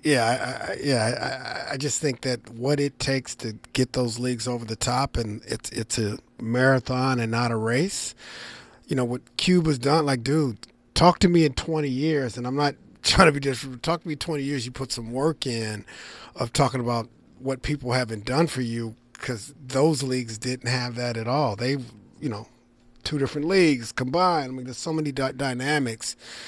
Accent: American